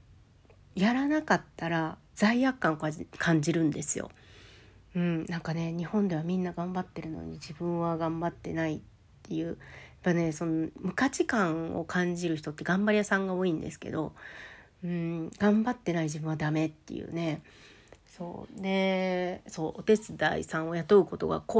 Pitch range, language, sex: 160-195 Hz, Japanese, female